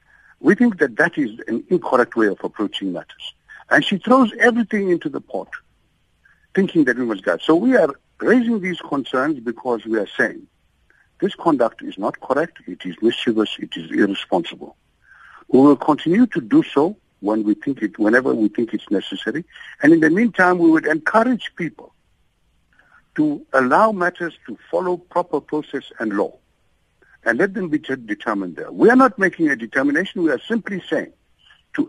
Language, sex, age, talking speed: English, male, 60-79, 175 wpm